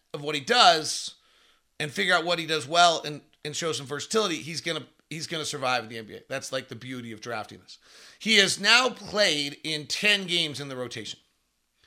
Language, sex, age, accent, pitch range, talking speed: English, male, 40-59, American, 125-180 Hz, 200 wpm